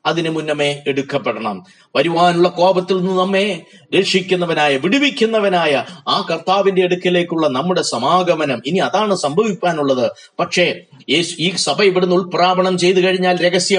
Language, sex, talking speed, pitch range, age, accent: Malayalam, male, 105 wpm, 180-200 Hz, 30-49, native